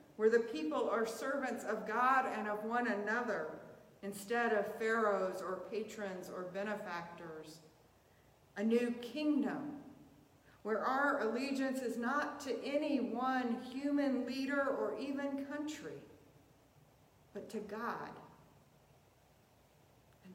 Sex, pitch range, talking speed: female, 185-220 Hz, 110 wpm